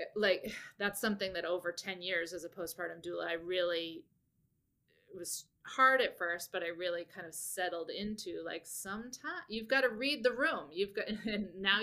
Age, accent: 30-49, American